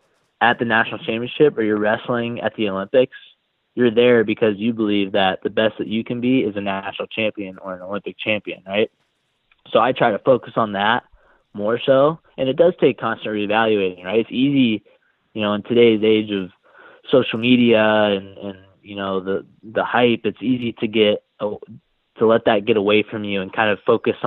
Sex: male